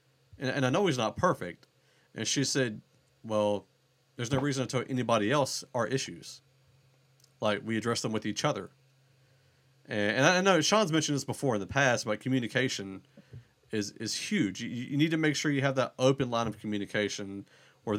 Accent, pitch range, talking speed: American, 105-135 Hz, 190 wpm